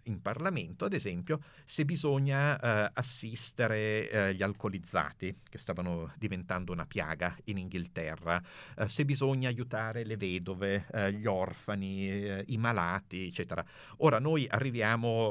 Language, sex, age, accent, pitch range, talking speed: Italian, male, 50-69, native, 95-125 Hz, 135 wpm